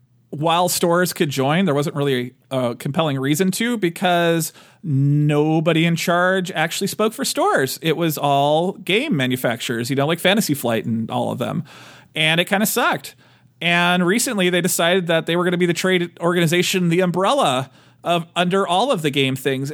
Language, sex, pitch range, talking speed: English, male, 140-185 Hz, 180 wpm